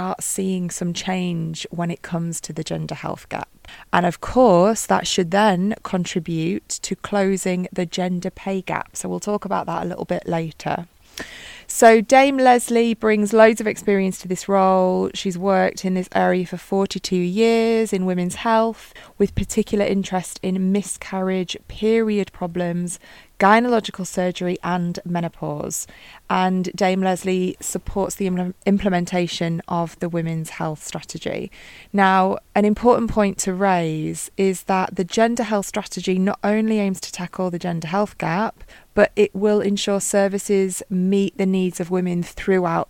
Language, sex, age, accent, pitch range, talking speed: English, female, 20-39, British, 180-205 Hz, 150 wpm